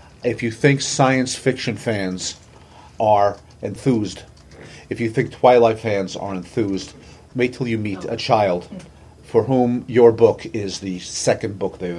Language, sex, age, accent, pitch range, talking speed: English, male, 40-59, American, 95-125 Hz, 150 wpm